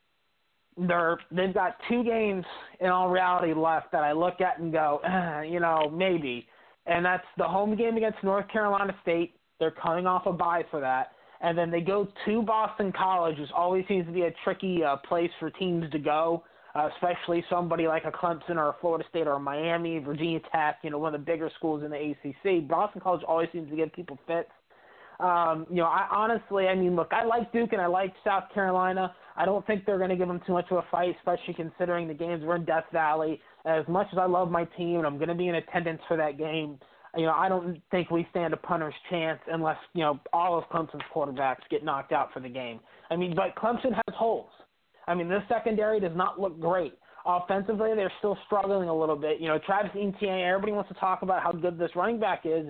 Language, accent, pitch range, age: English, American, 160-190 Hz, 20-39